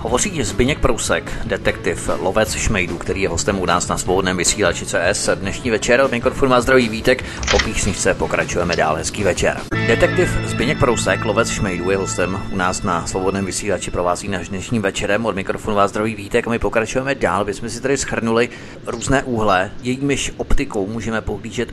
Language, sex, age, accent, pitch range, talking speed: Czech, male, 30-49, native, 95-120 Hz, 175 wpm